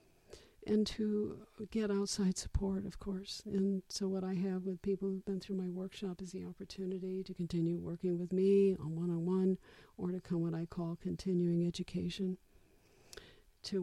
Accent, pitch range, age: American, 180-195 Hz, 50-69